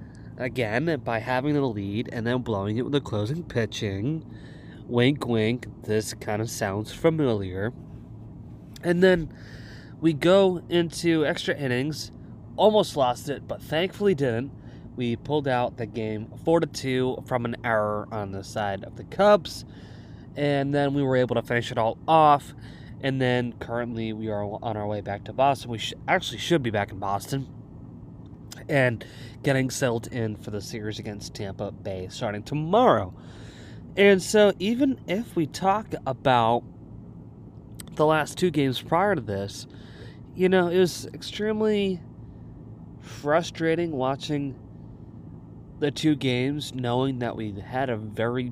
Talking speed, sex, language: 150 wpm, male, English